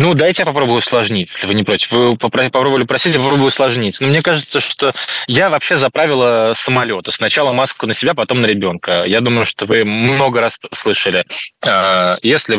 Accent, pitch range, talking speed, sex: native, 105-135 Hz, 185 wpm, male